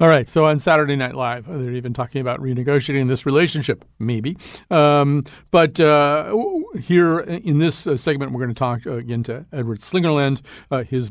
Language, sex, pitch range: English, male, 120-155 Hz